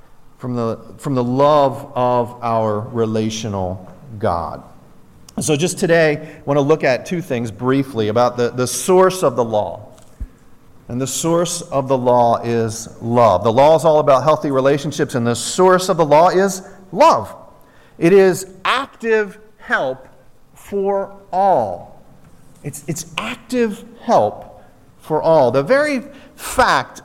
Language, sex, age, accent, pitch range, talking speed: English, male, 40-59, American, 135-225 Hz, 145 wpm